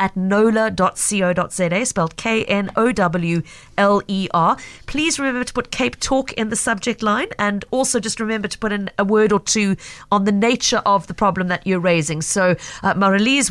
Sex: female